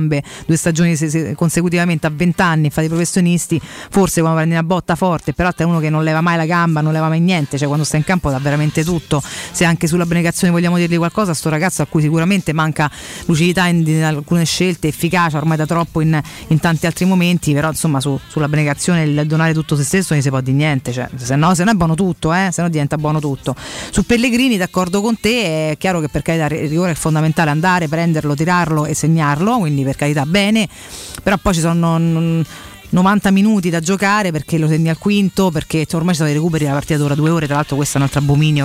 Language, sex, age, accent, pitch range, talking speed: Italian, female, 30-49, native, 150-175 Hz, 225 wpm